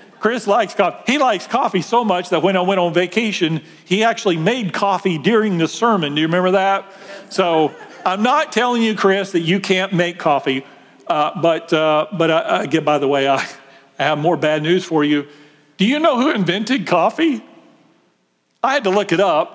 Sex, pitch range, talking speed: male, 140-190 Hz, 200 wpm